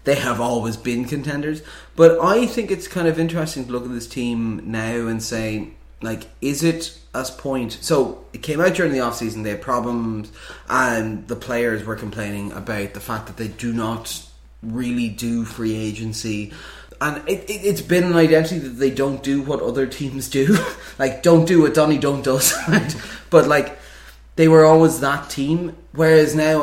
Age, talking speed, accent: 20-39, 185 wpm, Irish